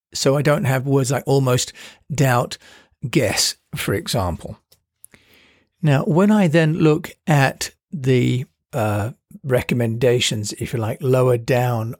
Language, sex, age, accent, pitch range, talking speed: English, male, 50-69, British, 130-160 Hz, 125 wpm